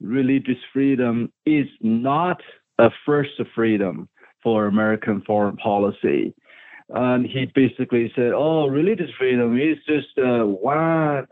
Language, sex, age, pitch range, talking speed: English, male, 50-69, 115-140 Hz, 115 wpm